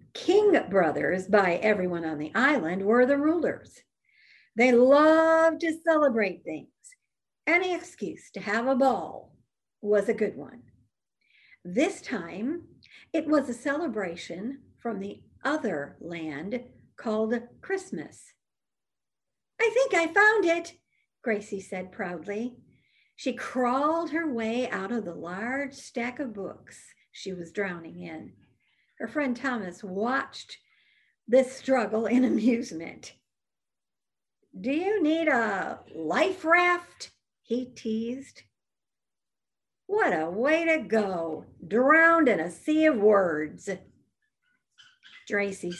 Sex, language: female, English